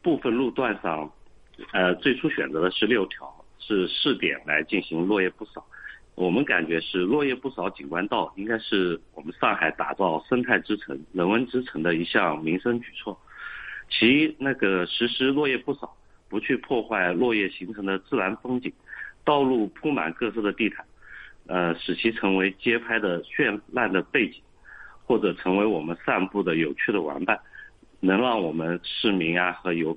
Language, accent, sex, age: Chinese, native, male, 50-69